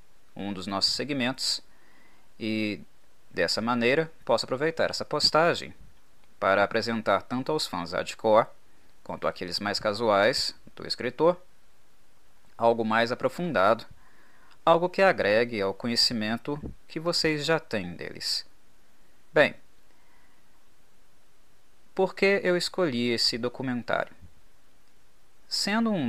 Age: 20-39